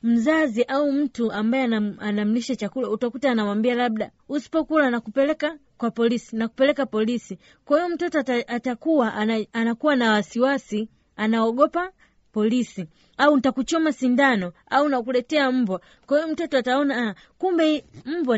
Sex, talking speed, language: female, 125 wpm, Swahili